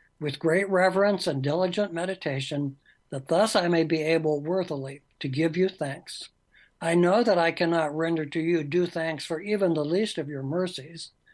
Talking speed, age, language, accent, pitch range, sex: 180 wpm, 60-79, English, American, 145-185 Hz, male